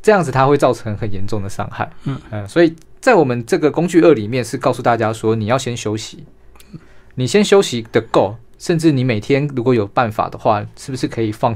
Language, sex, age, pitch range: Chinese, male, 20-39, 110-140 Hz